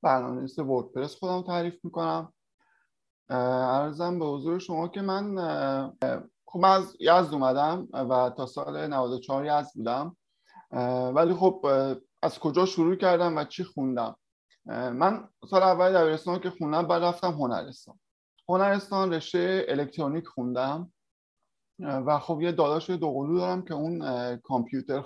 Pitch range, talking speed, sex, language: 130-180 Hz, 125 wpm, male, Persian